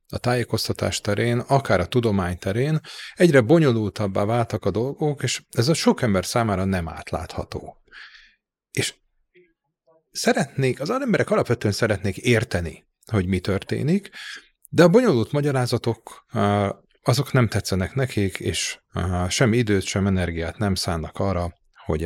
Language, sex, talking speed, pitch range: Hungarian, male, 130 wpm, 100-140 Hz